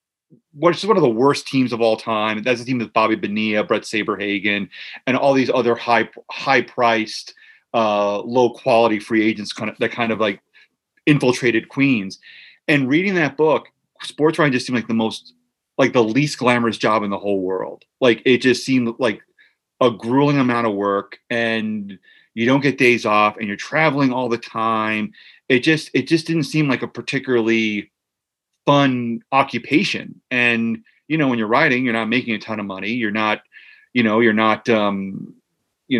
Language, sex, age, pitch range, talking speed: English, male, 30-49, 110-140 Hz, 185 wpm